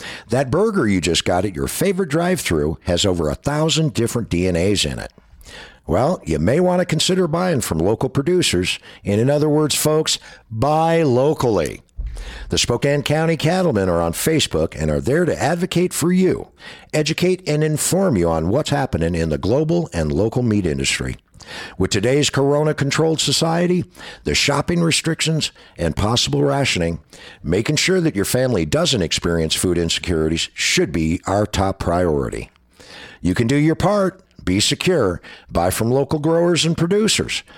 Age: 60-79